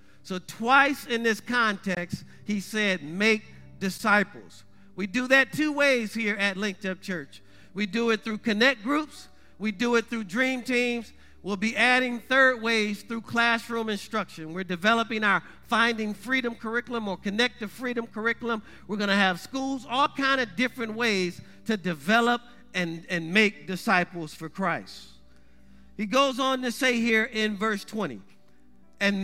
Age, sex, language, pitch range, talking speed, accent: 50-69, male, English, 180-245 Hz, 160 wpm, American